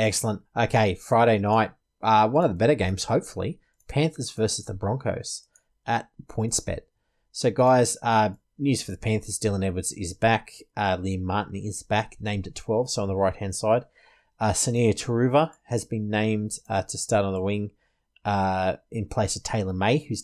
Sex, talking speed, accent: male, 180 wpm, Australian